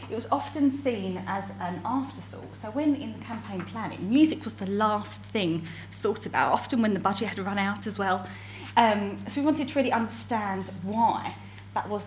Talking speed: 195 wpm